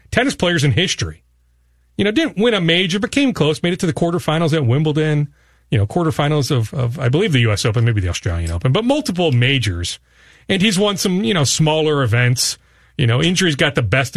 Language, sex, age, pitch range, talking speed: English, male, 40-59, 115-170 Hz, 215 wpm